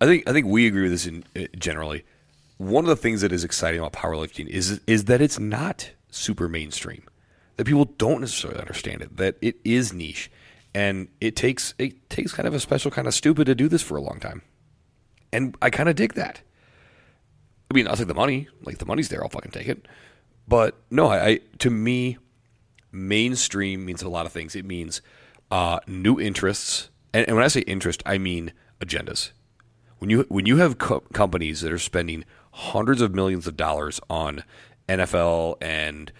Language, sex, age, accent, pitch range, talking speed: English, male, 30-49, American, 85-115 Hz, 200 wpm